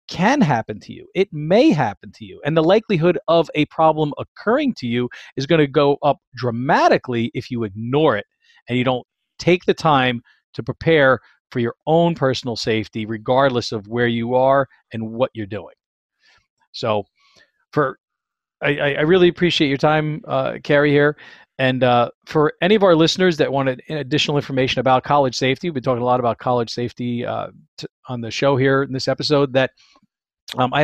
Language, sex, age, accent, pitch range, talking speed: English, male, 40-59, American, 120-155 Hz, 185 wpm